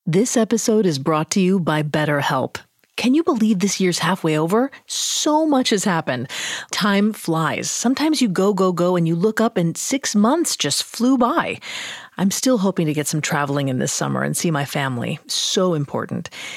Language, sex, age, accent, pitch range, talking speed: English, female, 30-49, American, 155-220 Hz, 190 wpm